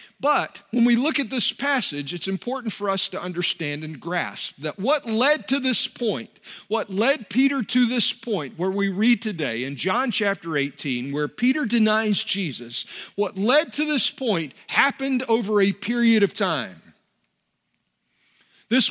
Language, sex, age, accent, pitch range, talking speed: English, male, 50-69, American, 190-250 Hz, 160 wpm